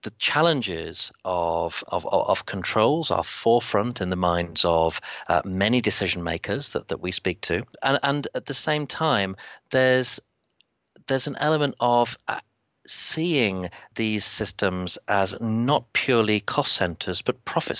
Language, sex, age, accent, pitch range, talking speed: English, male, 40-59, British, 95-130 Hz, 145 wpm